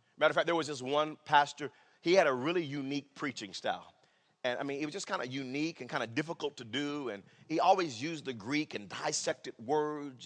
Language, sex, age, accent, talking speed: English, male, 30-49, American, 230 wpm